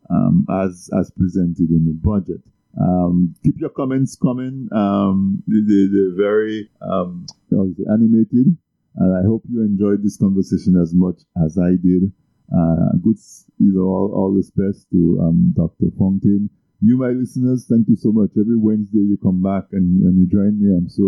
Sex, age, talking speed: male, 50-69, 175 wpm